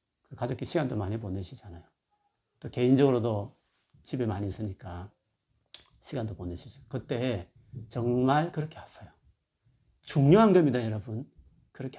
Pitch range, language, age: 105-140 Hz, Korean, 40-59